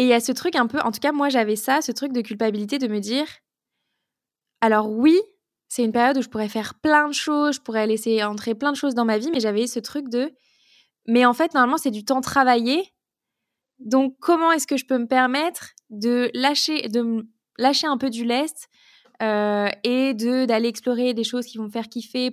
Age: 20-39